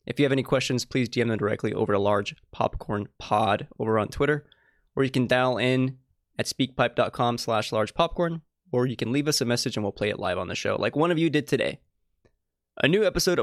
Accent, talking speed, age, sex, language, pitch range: American, 225 wpm, 20-39, male, English, 115-140 Hz